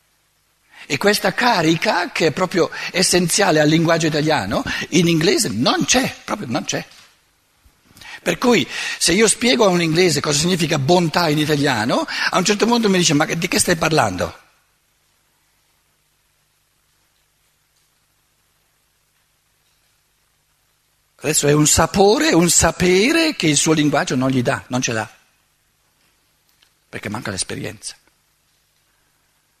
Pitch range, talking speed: 130-185 Hz, 120 wpm